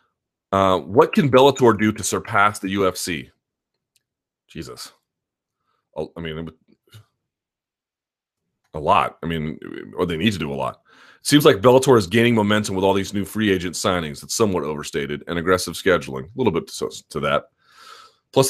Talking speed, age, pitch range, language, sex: 160 wpm, 30-49, 85-110 Hz, English, male